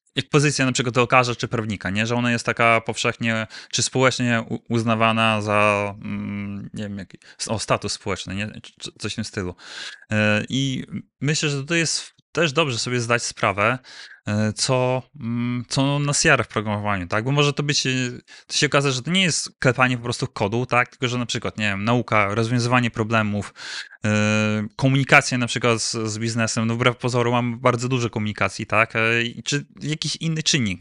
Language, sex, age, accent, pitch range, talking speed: Polish, male, 20-39, native, 115-140 Hz, 175 wpm